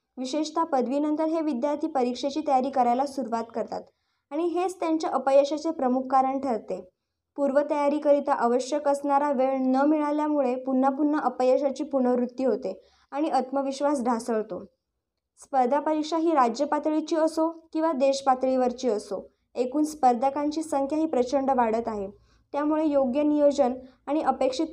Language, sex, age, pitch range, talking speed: Marathi, male, 20-39, 255-295 Hz, 120 wpm